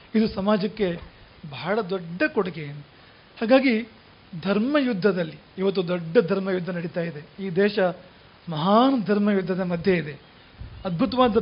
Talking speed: 105 wpm